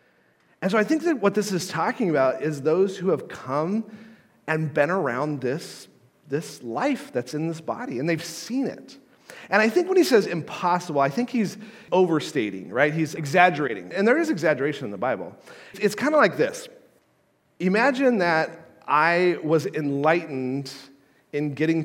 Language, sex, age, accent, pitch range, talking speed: English, male, 40-59, American, 140-200 Hz, 170 wpm